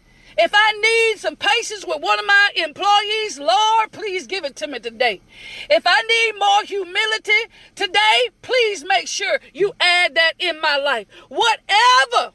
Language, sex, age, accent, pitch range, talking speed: English, female, 40-59, American, 355-435 Hz, 160 wpm